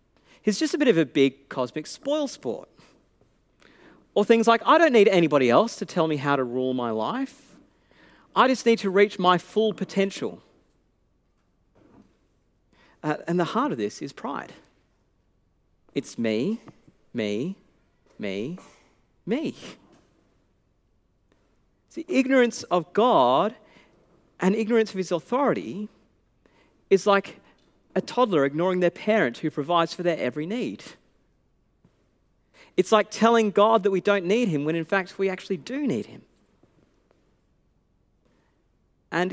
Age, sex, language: 40-59, male, English